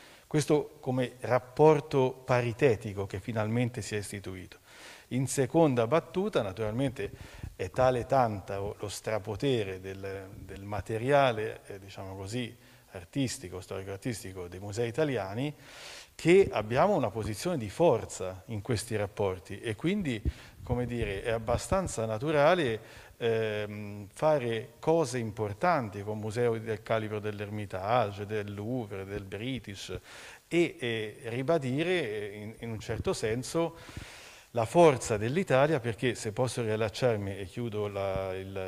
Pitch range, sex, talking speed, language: 100-130 Hz, male, 120 wpm, Italian